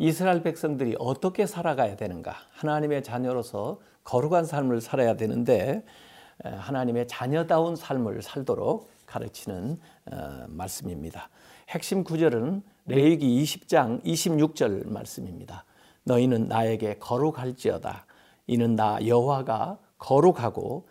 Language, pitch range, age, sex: Korean, 120-170 Hz, 50-69, male